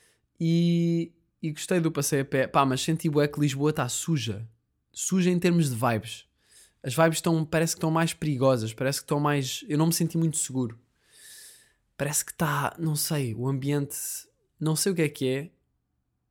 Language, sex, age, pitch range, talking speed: Portuguese, male, 20-39, 120-155 Hz, 190 wpm